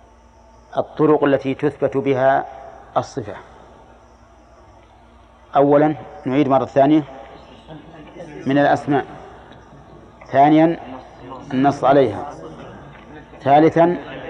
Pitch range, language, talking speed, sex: 135-155 Hz, Arabic, 65 wpm, male